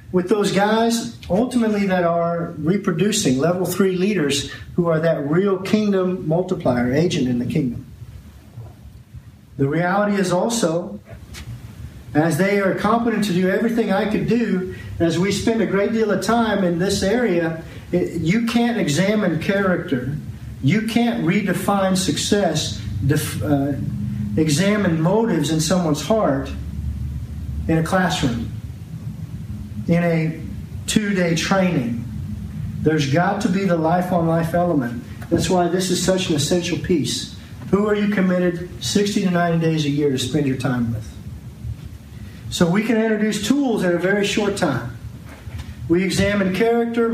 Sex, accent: male, American